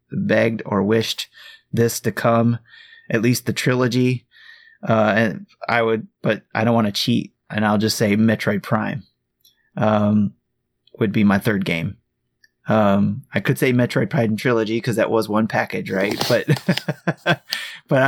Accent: American